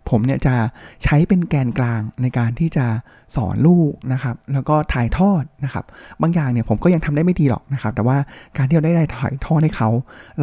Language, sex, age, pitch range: Thai, male, 20-39, 120-155 Hz